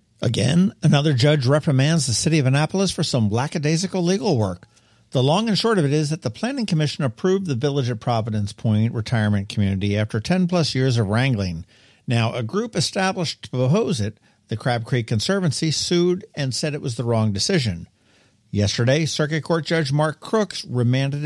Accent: American